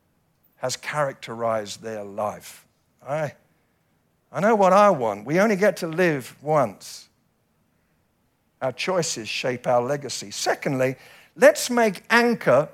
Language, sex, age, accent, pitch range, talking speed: English, male, 50-69, British, 160-225 Hz, 120 wpm